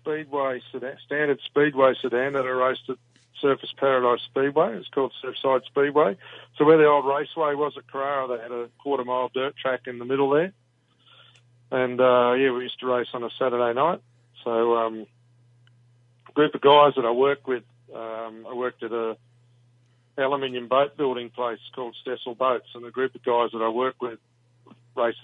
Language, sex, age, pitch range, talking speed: English, male, 40-59, 120-130 Hz, 185 wpm